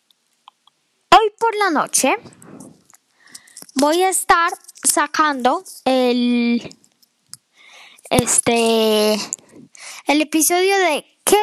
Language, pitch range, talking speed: Spanish, 270-365 Hz, 75 wpm